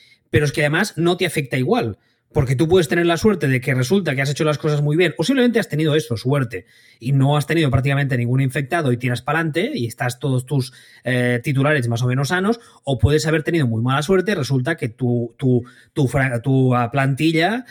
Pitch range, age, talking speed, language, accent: 125-180 Hz, 20-39, 225 wpm, Spanish, Spanish